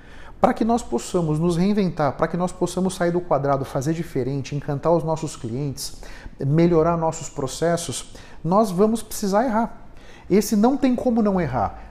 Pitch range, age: 140-195 Hz, 40-59